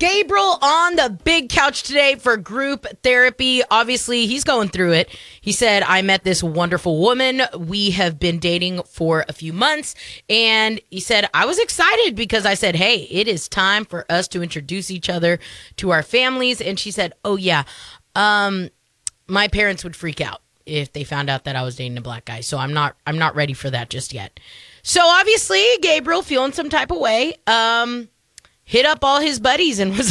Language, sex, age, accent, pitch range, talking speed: English, female, 20-39, American, 175-275 Hz, 195 wpm